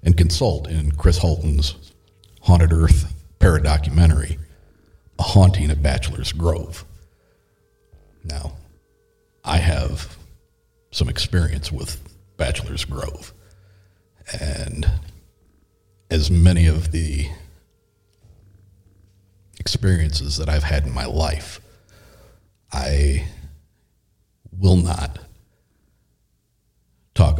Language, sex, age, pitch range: English, male, 50-69, 75-95 Hz